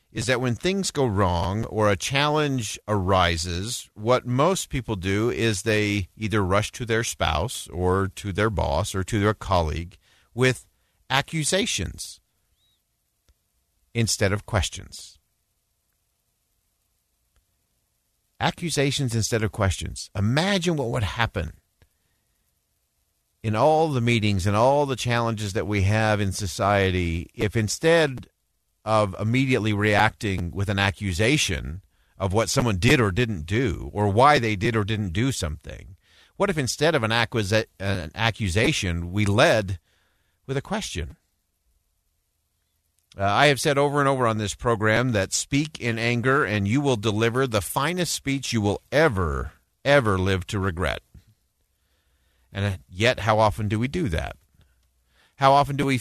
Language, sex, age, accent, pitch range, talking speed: English, male, 50-69, American, 90-125 Hz, 140 wpm